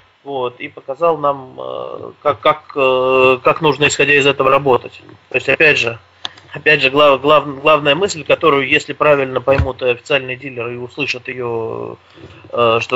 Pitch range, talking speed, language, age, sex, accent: 125-145 Hz, 150 wpm, Russian, 20-39, male, native